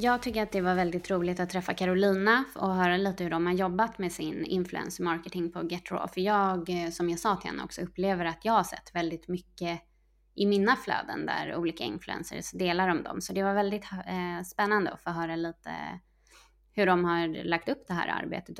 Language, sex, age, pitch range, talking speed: English, female, 20-39, 170-195 Hz, 200 wpm